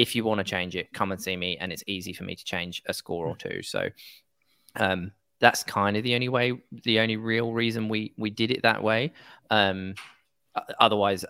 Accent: British